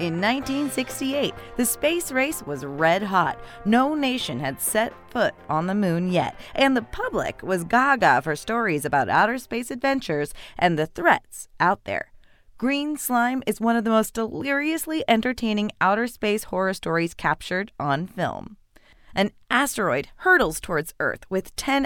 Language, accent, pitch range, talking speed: English, American, 165-255 Hz, 155 wpm